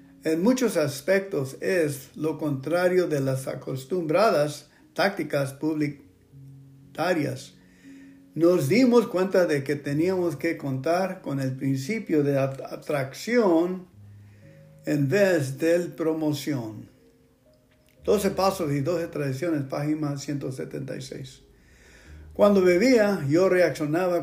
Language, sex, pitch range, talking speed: English, male, 140-175 Hz, 95 wpm